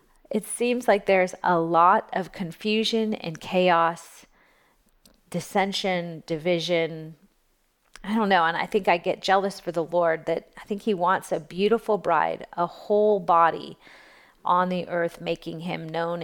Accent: American